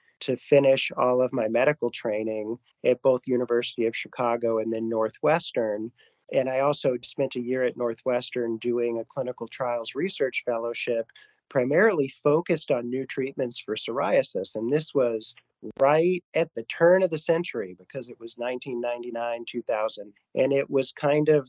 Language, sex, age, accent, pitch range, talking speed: English, male, 40-59, American, 120-135 Hz, 155 wpm